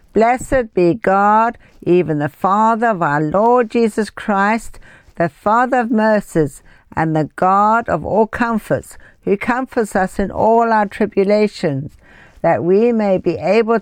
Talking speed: 145 wpm